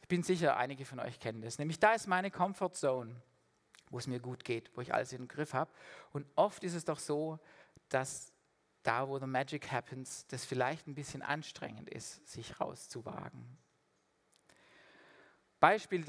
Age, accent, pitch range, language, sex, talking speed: 50-69, German, 125-160 Hz, German, male, 175 wpm